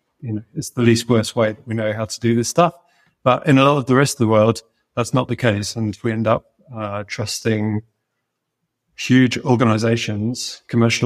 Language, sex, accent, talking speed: English, male, British, 205 wpm